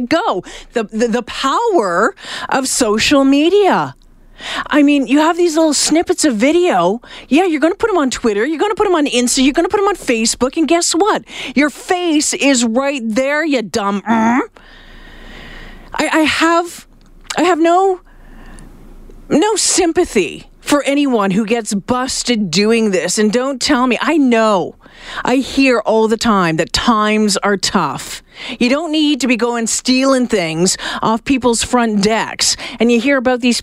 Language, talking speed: English, 170 wpm